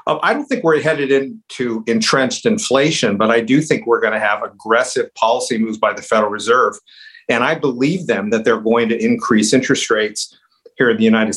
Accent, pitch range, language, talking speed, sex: American, 105-125 Hz, English, 200 wpm, male